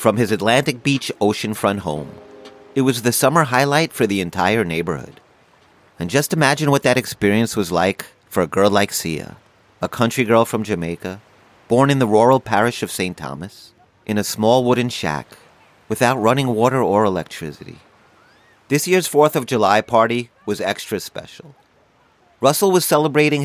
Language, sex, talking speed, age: English, male, 160 wpm, 30-49